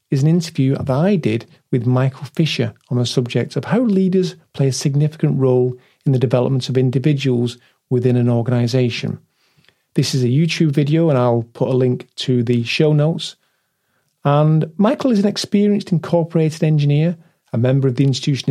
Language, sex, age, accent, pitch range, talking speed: English, male, 40-59, British, 130-165 Hz, 170 wpm